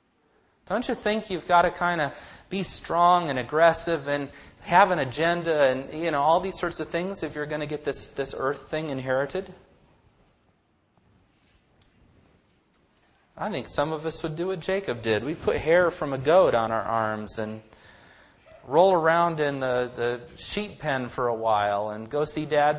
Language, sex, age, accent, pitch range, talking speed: English, male, 30-49, American, 110-160 Hz, 180 wpm